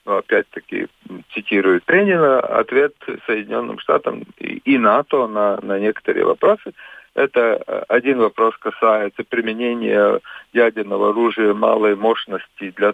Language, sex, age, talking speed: Russian, male, 50-69, 105 wpm